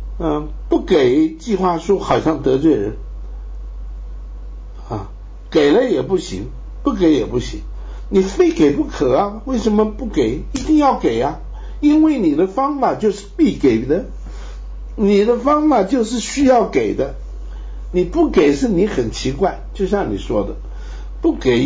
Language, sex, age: Chinese, male, 60-79